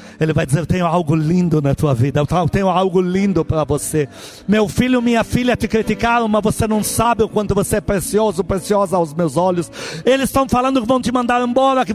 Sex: male